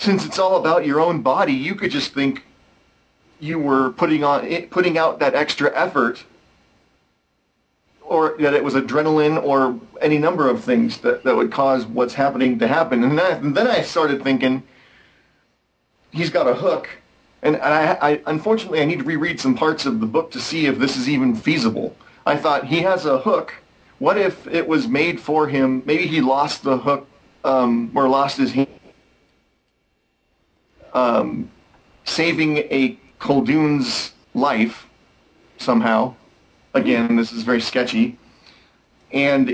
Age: 40-59